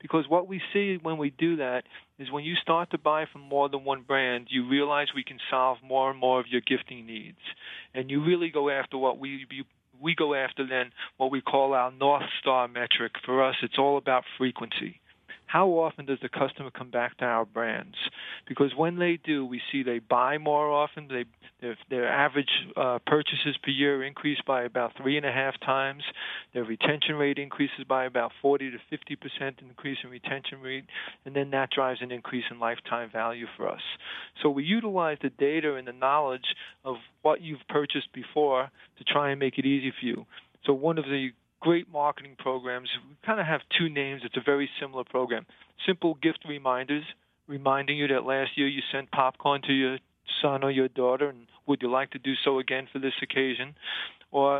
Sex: male